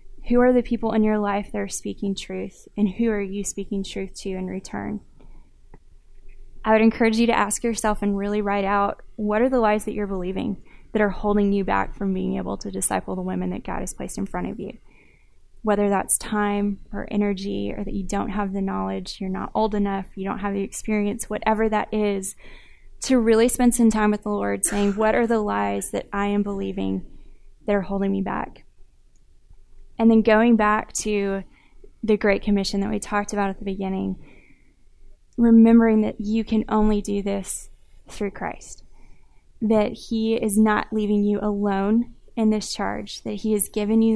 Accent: American